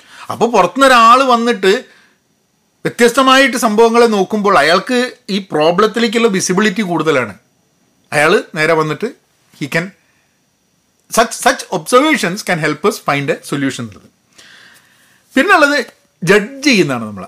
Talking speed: 105 wpm